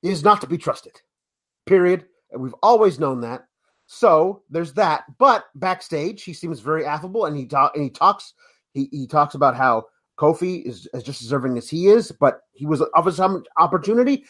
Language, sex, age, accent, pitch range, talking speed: English, male, 30-49, American, 155-220 Hz, 190 wpm